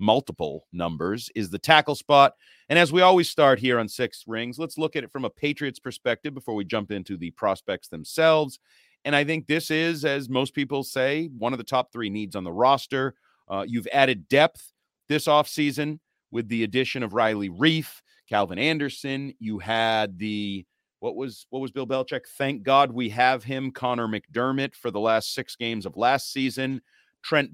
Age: 40-59